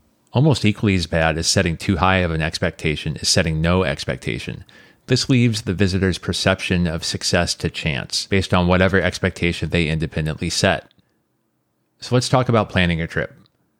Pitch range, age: 85-105 Hz, 30-49